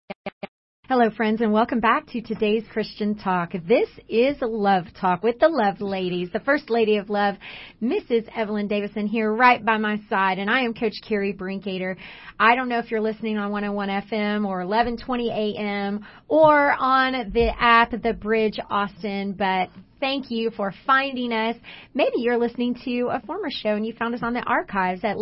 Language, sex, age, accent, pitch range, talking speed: English, female, 30-49, American, 205-235 Hz, 180 wpm